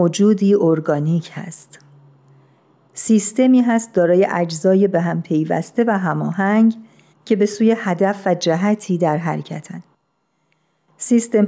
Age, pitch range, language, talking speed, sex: 50-69, 175-220 Hz, Persian, 110 wpm, female